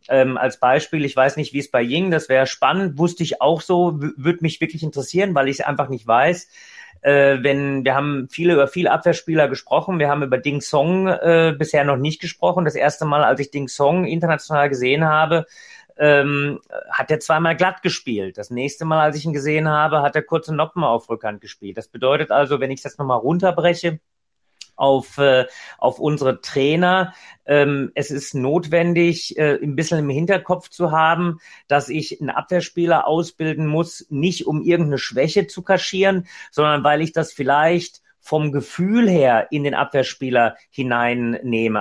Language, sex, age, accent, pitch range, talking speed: German, male, 30-49, German, 140-170 Hz, 180 wpm